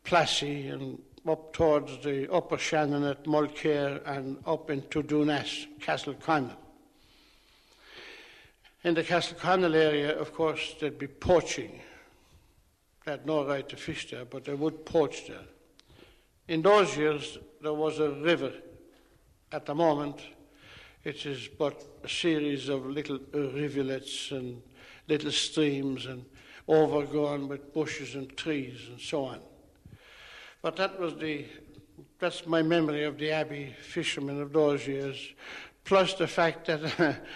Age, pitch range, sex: 60-79, 140-160 Hz, male